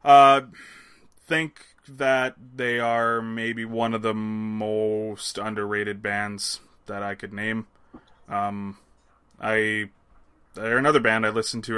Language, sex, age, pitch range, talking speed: English, male, 20-39, 100-120 Hz, 125 wpm